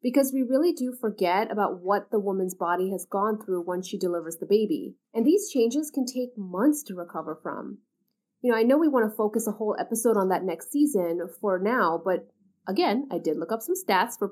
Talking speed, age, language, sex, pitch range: 220 wpm, 30-49, English, female, 195-245 Hz